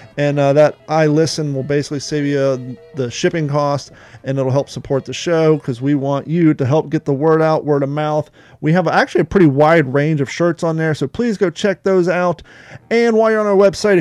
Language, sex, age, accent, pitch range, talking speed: English, male, 30-49, American, 145-185 Hz, 235 wpm